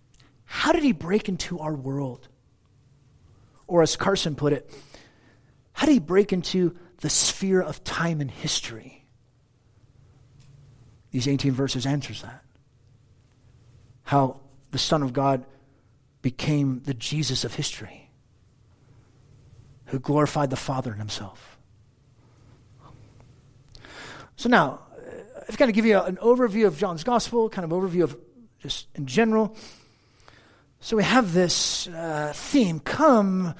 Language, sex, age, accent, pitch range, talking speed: English, male, 40-59, American, 120-170 Hz, 130 wpm